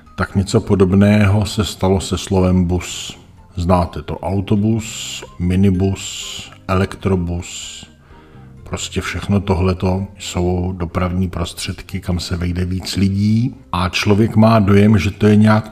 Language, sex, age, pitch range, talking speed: Czech, male, 50-69, 90-100 Hz, 120 wpm